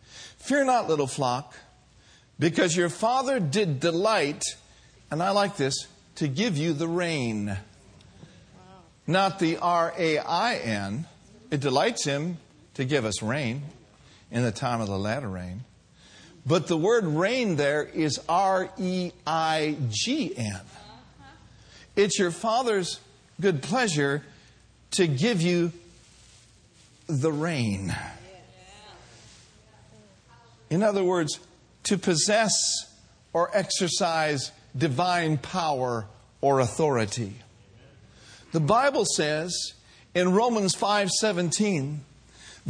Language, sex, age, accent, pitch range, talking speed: English, male, 50-69, American, 125-195 Hz, 95 wpm